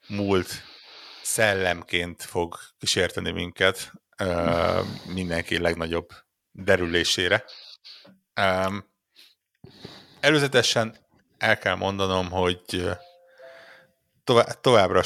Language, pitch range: Hungarian, 85-105 Hz